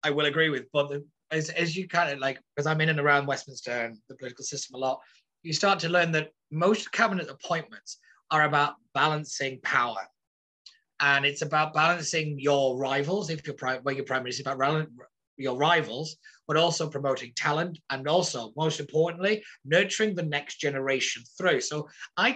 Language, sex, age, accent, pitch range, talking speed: English, male, 30-49, British, 140-175 Hz, 175 wpm